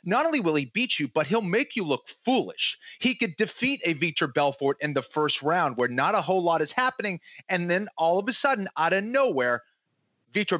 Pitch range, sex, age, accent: 140-195 Hz, male, 30-49, American